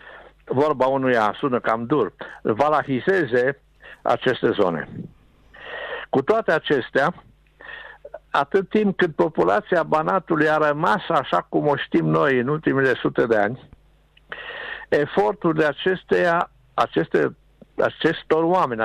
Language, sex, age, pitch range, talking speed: Romanian, male, 60-79, 135-190 Hz, 105 wpm